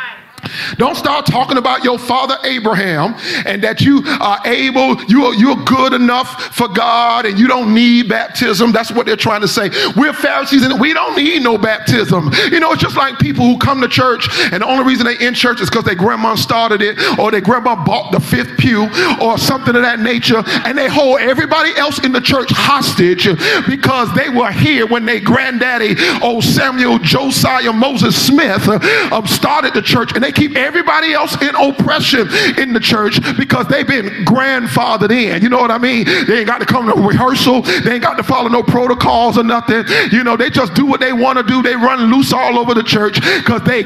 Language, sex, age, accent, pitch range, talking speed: English, male, 40-59, American, 225-265 Hz, 210 wpm